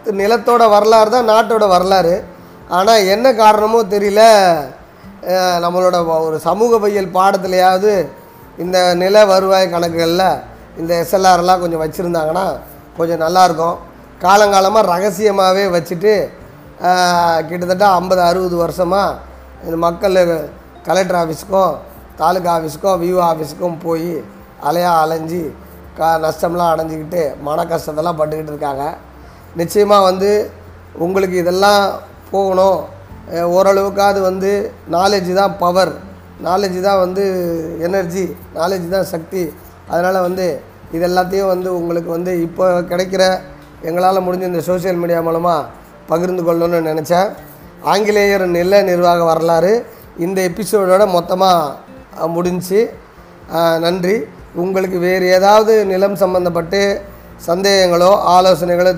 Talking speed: 100 wpm